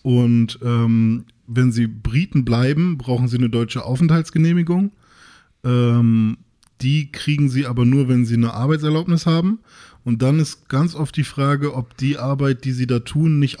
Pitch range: 120-140 Hz